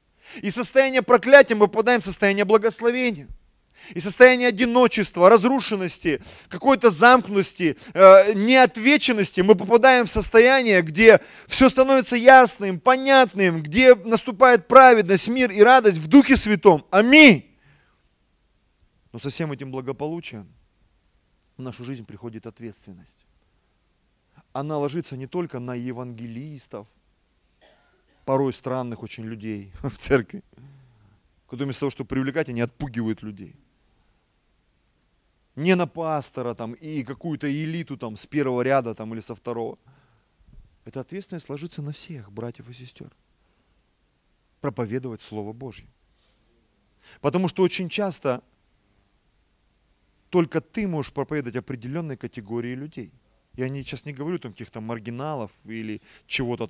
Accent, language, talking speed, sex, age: native, Russian, 115 wpm, male, 30-49